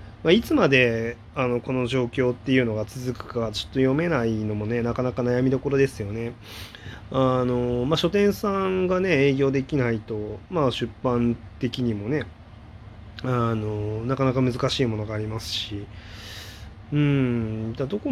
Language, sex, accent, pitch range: Japanese, male, native, 105-135 Hz